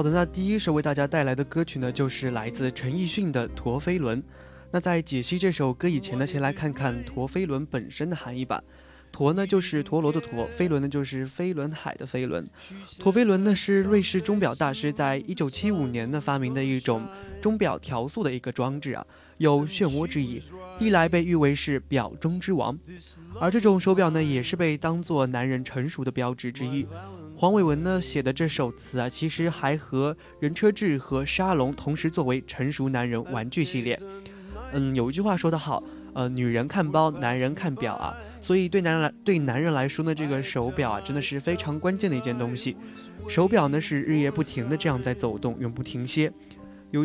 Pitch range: 130-170 Hz